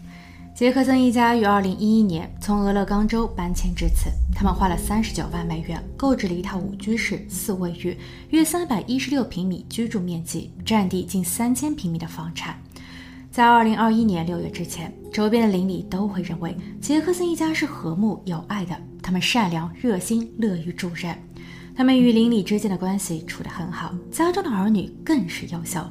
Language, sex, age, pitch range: Chinese, female, 20-39, 170-225 Hz